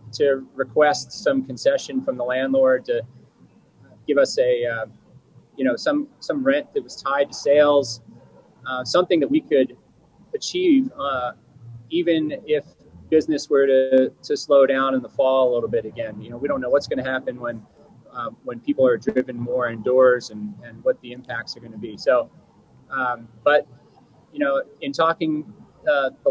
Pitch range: 125-190 Hz